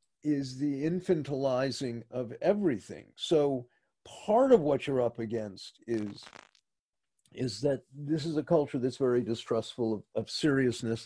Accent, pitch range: American, 120-160 Hz